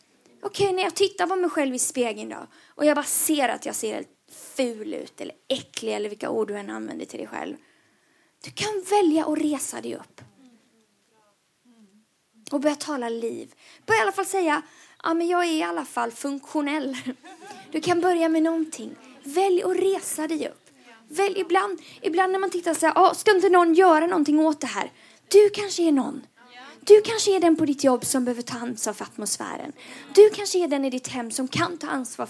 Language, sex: Swedish, female